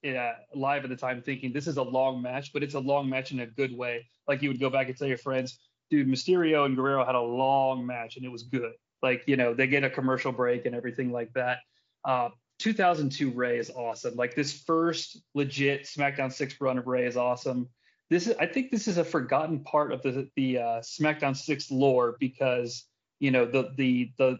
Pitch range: 125-145 Hz